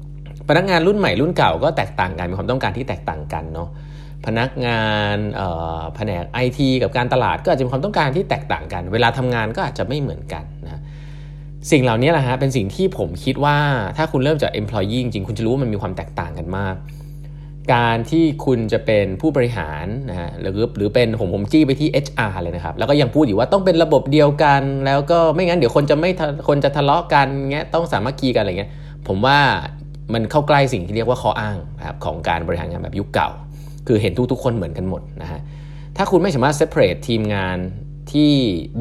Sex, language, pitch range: male, Thai, 100-145 Hz